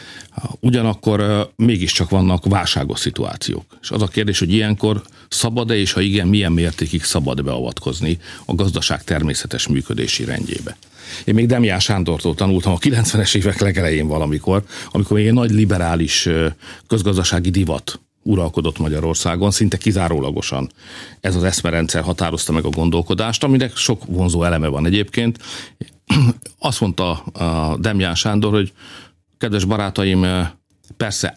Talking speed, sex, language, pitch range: 125 wpm, male, Hungarian, 80-105 Hz